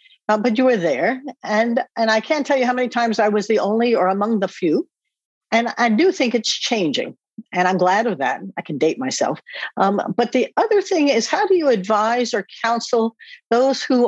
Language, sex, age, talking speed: English, female, 60-79, 215 wpm